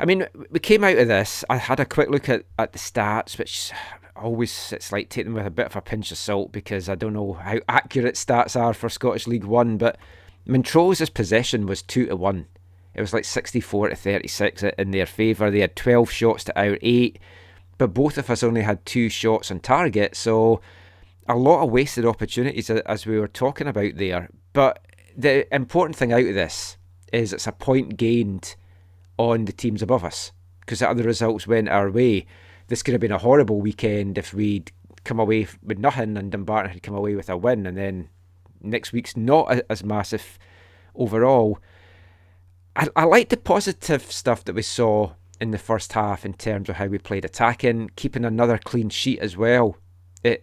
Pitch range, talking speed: 95-120 Hz, 200 wpm